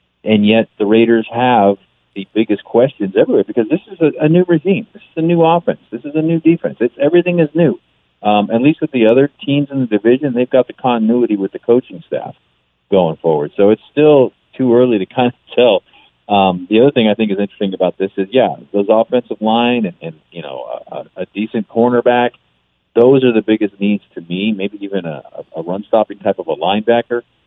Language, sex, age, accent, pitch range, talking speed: English, male, 40-59, American, 100-130 Hz, 215 wpm